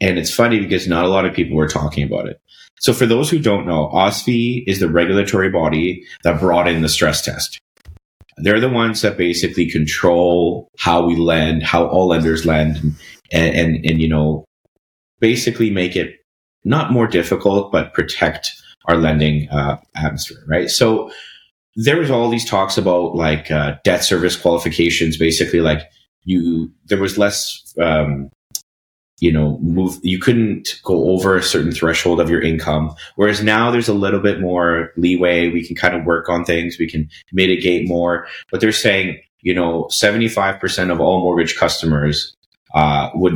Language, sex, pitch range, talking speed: English, male, 80-95 Hz, 170 wpm